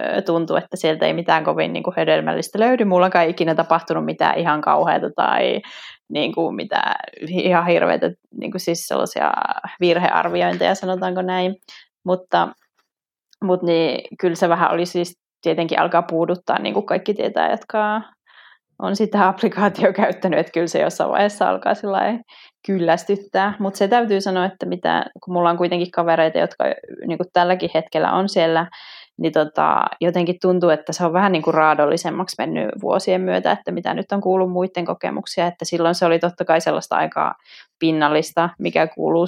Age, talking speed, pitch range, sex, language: 20-39, 160 wpm, 165-190 Hz, female, Finnish